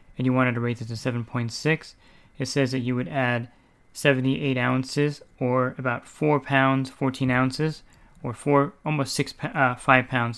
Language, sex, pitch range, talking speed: English, male, 120-135 Hz, 170 wpm